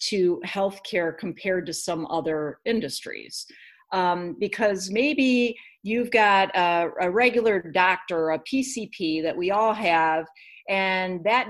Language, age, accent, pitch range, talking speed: English, 50-69, American, 185-260 Hz, 125 wpm